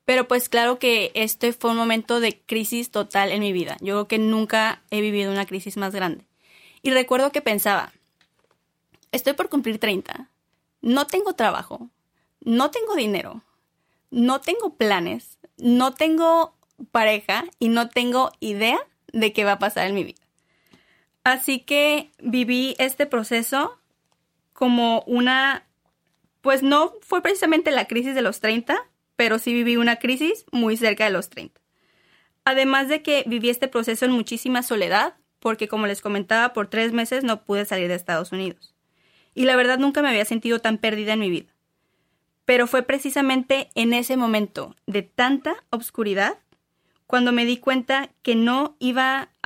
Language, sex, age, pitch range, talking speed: Spanish, female, 20-39, 215-260 Hz, 160 wpm